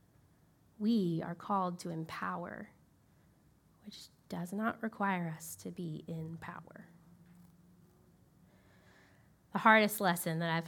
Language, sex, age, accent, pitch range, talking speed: English, female, 10-29, American, 170-245 Hz, 105 wpm